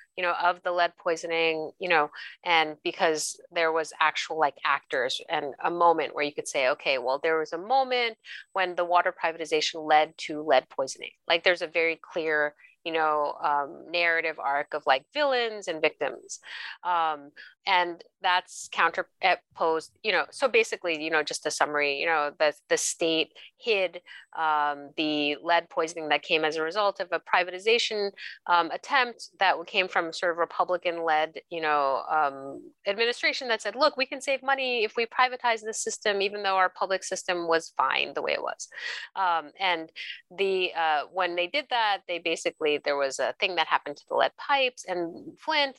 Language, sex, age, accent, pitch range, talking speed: English, female, 30-49, American, 155-225 Hz, 180 wpm